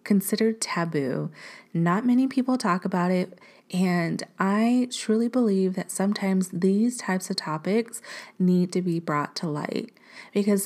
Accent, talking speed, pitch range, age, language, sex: American, 140 wpm, 170-215 Hz, 30-49, English, female